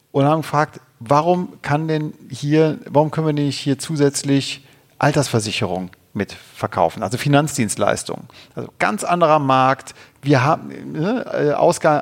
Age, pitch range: 40-59, 125-155 Hz